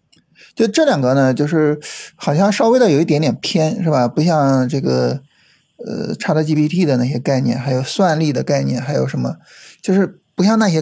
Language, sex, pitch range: Chinese, male, 145-205 Hz